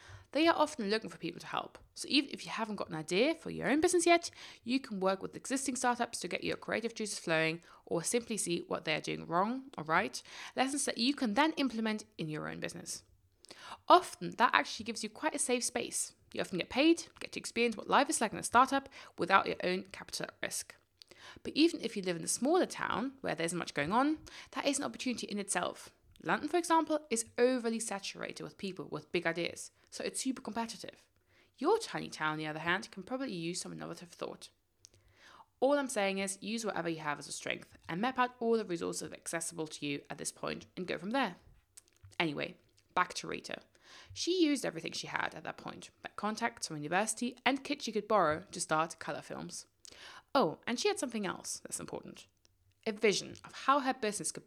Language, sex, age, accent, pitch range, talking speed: English, female, 20-39, British, 170-265 Hz, 215 wpm